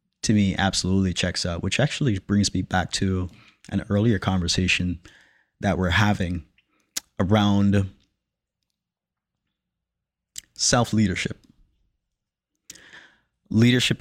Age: 30-49